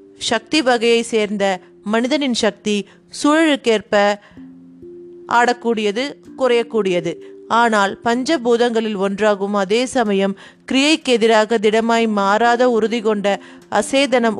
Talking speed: 85 wpm